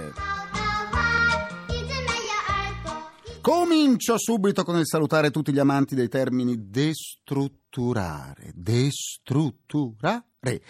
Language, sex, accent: Italian, male, native